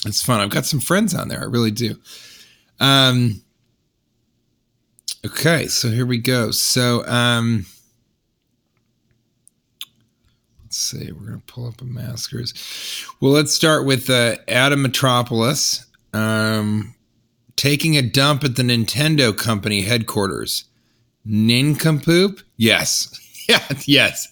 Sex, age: male, 40-59